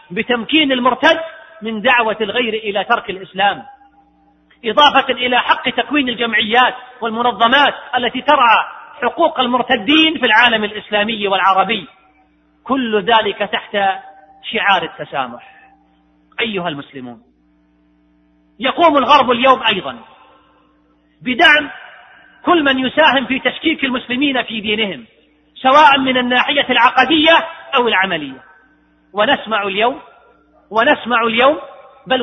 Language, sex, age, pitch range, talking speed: Arabic, male, 40-59, 230-290 Hz, 100 wpm